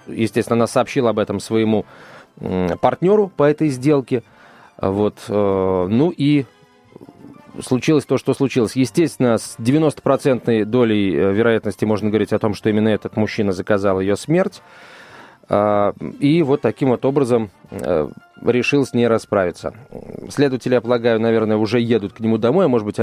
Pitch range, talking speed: 110-140 Hz, 135 wpm